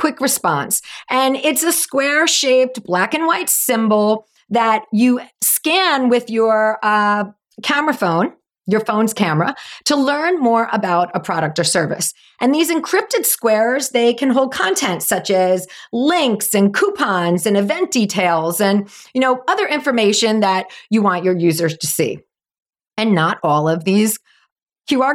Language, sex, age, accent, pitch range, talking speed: English, female, 40-59, American, 200-275 Hz, 150 wpm